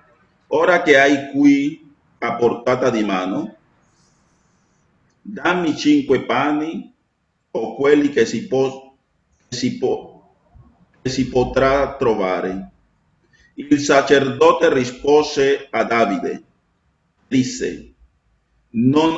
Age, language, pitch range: 50-69, Italian, 115-155 Hz